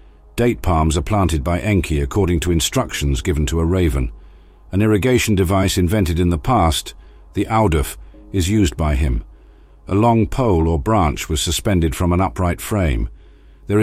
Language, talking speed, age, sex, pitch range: English, 165 wpm, 50-69, male, 75-100 Hz